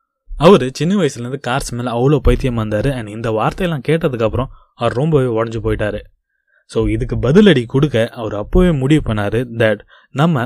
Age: 20-39